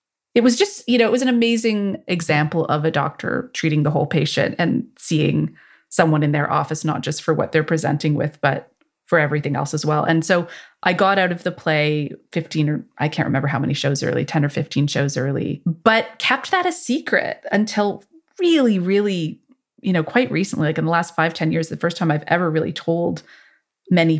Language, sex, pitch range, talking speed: English, female, 160-205 Hz, 210 wpm